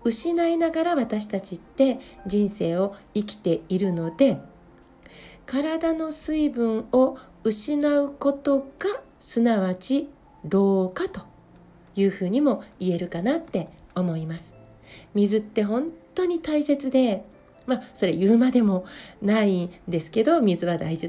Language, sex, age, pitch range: Japanese, female, 40-59, 180-270 Hz